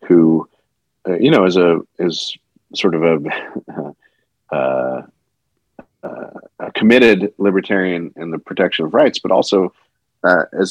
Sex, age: male, 40-59